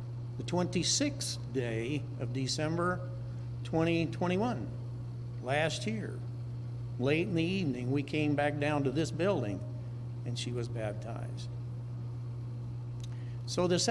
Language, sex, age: English, male, 60-79